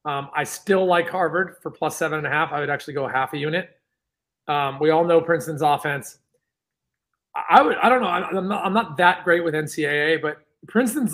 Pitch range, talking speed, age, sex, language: 150-180 Hz, 220 wpm, 30-49, male, English